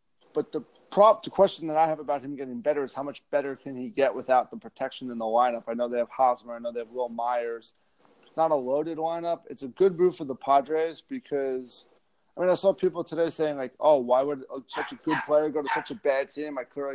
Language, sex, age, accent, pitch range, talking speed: English, male, 30-49, American, 135-170 Hz, 255 wpm